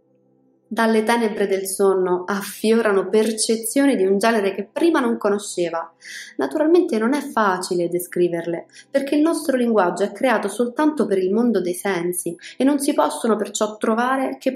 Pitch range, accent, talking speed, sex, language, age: 180-230 Hz, native, 155 wpm, female, Italian, 20-39